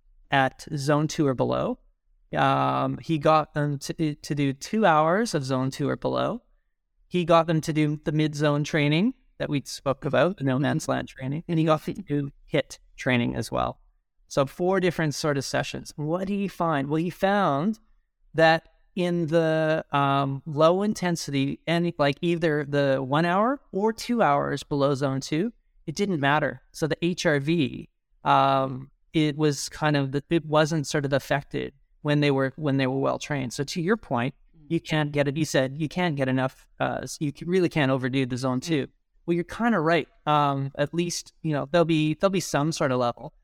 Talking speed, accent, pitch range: 195 wpm, American, 135-165 Hz